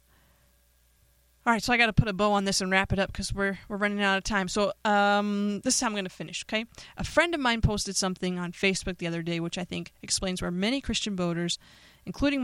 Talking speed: 245 wpm